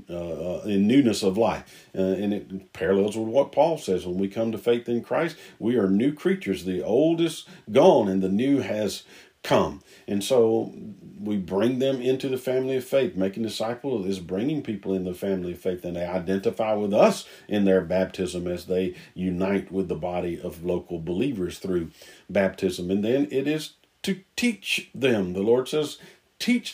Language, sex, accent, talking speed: English, male, American, 190 wpm